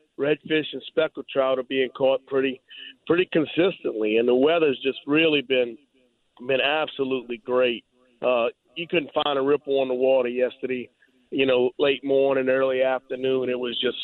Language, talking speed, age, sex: English, 165 wpm, 40-59, male